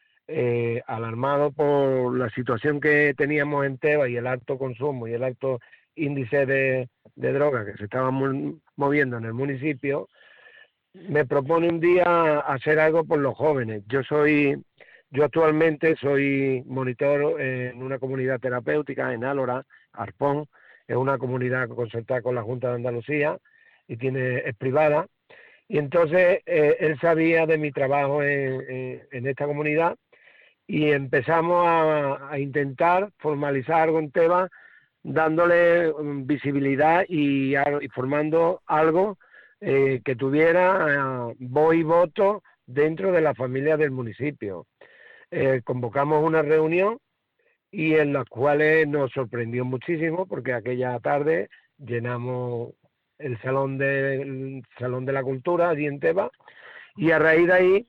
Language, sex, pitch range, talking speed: Spanish, male, 130-160 Hz, 140 wpm